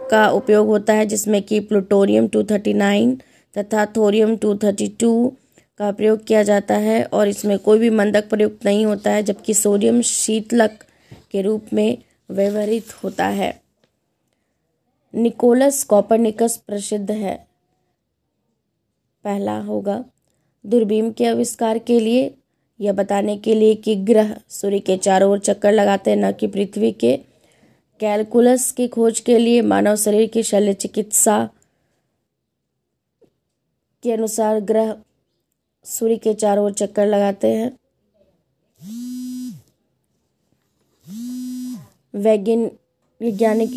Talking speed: 115 wpm